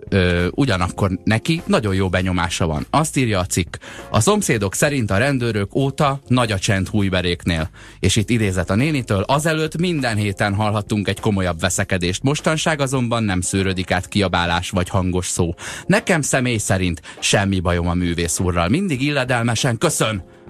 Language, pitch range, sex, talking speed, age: Hungarian, 100-145 Hz, male, 155 wpm, 30-49